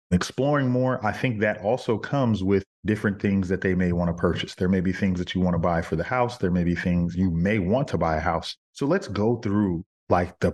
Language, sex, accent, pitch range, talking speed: English, male, American, 90-110 Hz, 255 wpm